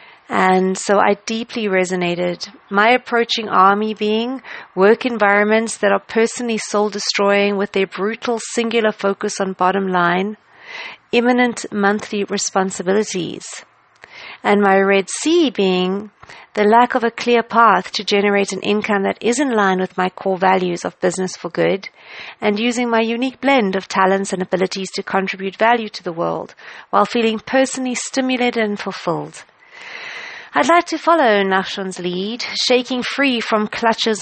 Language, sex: English, female